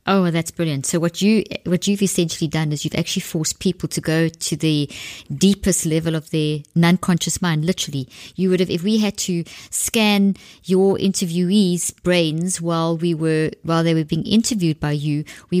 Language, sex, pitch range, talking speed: English, female, 160-185 Hz, 190 wpm